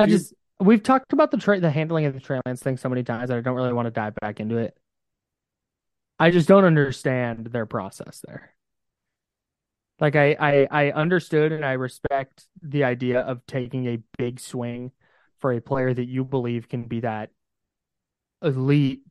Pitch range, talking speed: 120-150 Hz, 185 wpm